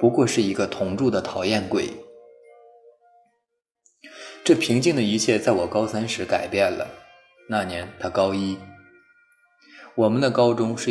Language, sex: Chinese, male